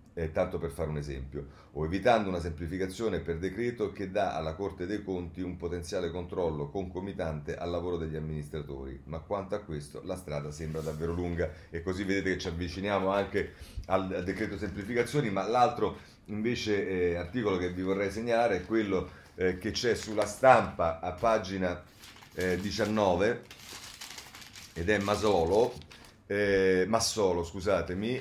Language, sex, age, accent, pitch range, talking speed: Italian, male, 40-59, native, 85-105 Hz, 155 wpm